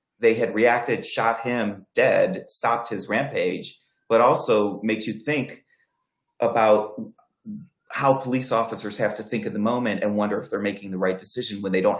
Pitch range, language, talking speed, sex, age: 105-140 Hz, English, 175 wpm, male, 30-49